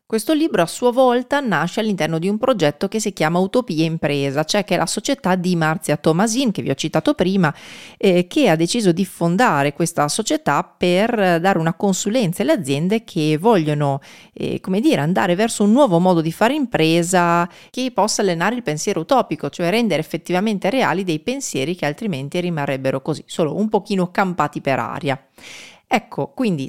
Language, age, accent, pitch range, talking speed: Italian, 40-59, native, 155-215 Hz, 180 wpm